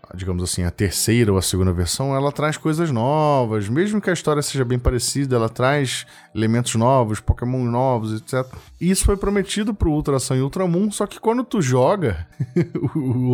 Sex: male